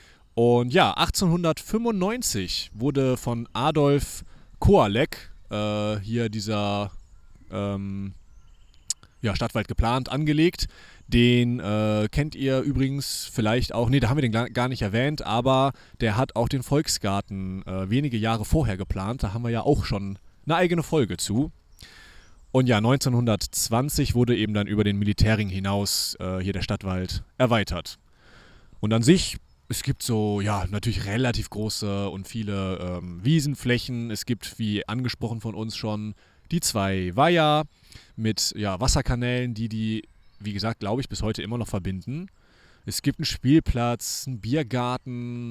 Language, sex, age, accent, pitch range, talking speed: German, male, 30-49, German, 100-125 Hz, 140 wpm